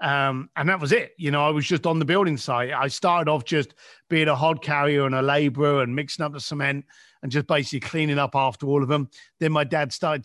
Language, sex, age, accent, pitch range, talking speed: English, male, 50-69, British, 150-200 Hz, 250 wpm